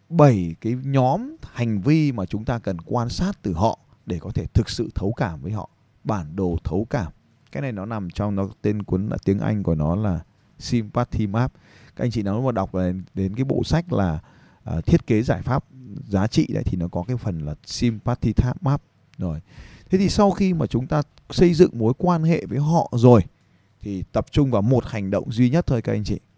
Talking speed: 225 wpm